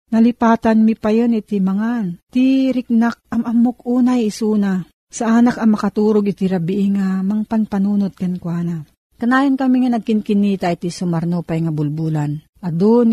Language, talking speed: Filipino, 140 wpm